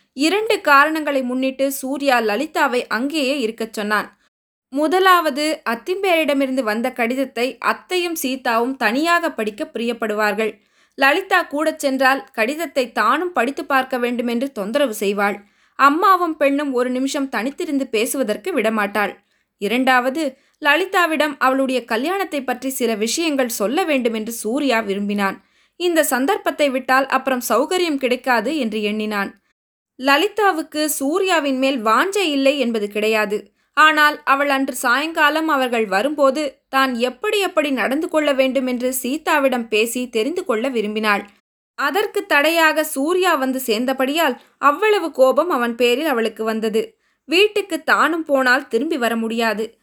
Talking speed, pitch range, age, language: 115 wpm, 230-300 Hz, 20-39, Tamil